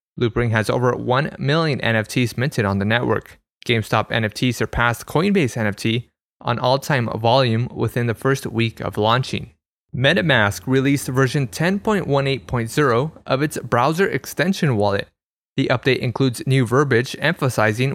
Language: English